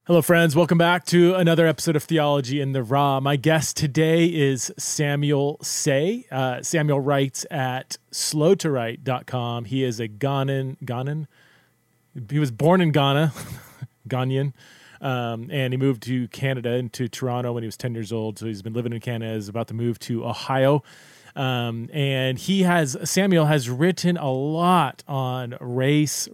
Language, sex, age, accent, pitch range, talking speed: English, male, 30-49, American, 125-155 Hz, 160 wpm